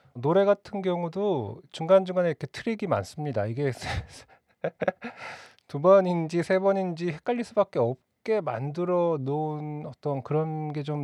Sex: male